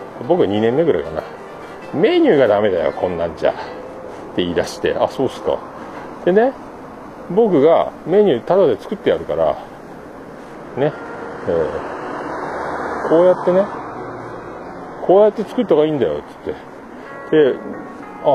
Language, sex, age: Japanese, male, 40-59